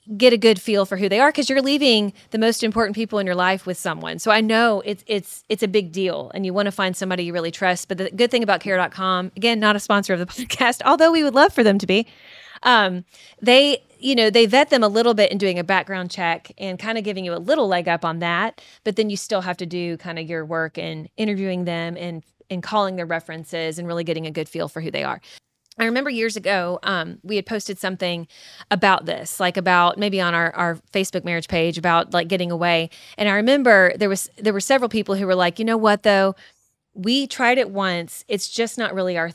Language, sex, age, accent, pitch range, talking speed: English, female, 20-39, American, 175-225 Hz, 250 wpm